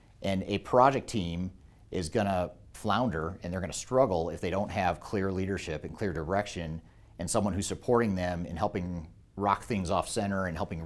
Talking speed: 195 wpm